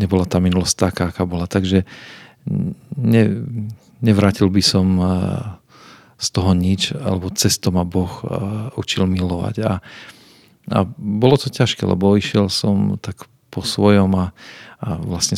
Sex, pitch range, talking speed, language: male, 95-110 Hz, 135 wpm, Slovak